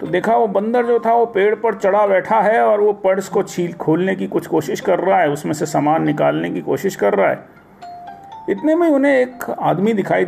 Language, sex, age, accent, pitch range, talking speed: Hindi, male, 40-59, native, 175-230 Hz, 230 wpm